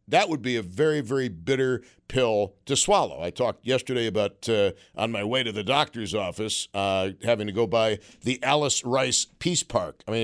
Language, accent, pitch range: English, American, 105-130 Hz